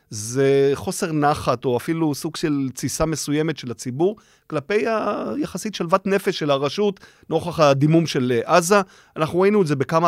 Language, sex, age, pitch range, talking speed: Hebrew, male, 30-49, 130-170 Hz, 155 wpm